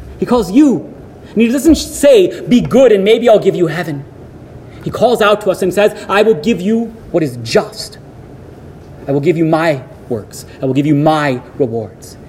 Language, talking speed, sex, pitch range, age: English, 200 wpm, male, 135-175 Hz, 30-49